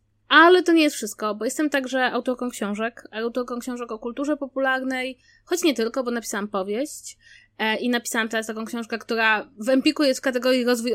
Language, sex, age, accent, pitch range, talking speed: Polish, female, 20-39, native, 240-295 Hz, 180 wpm